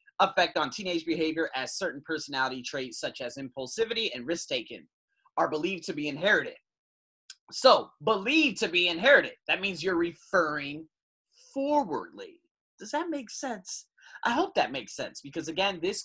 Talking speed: 150 wpm